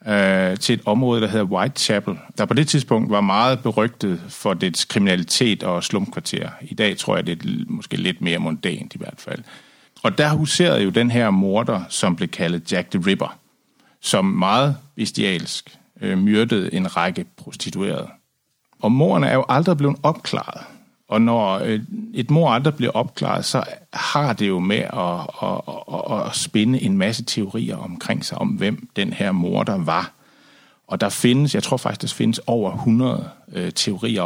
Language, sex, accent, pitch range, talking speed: Danish, male, native, 105-155 Hz, 170 wpm